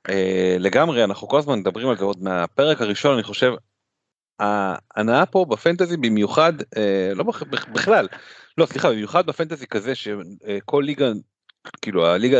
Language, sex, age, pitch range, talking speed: Hebrew, male, 40-59, 100-155 Hz, 145 wpm